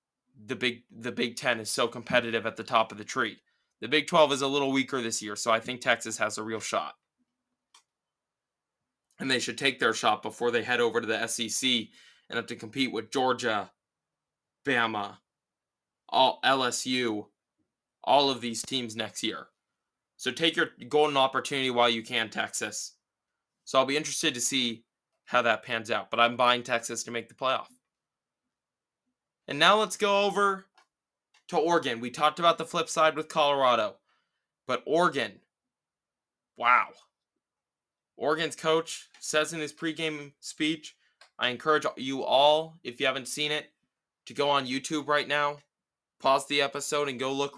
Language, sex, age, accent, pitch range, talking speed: English, male, 20-39, American, 120-150 Hz, 165 wpm